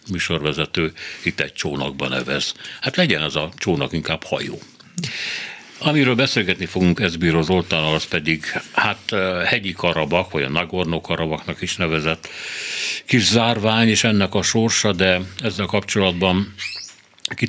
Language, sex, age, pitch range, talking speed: Hungarian, male, 60-79, 80-100 Hz, 130 wpm